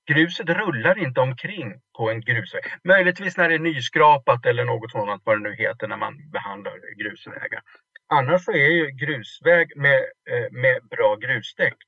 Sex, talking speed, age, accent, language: male, 160 wpm, 50-69, Norwegian, Swedish